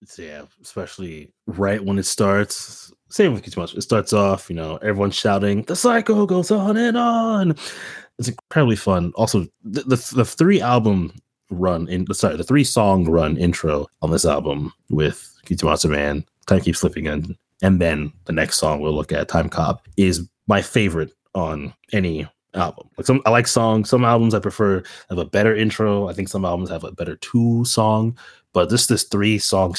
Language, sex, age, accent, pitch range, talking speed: English, male, 20-39, American, 90-115 Hz, 185 wpm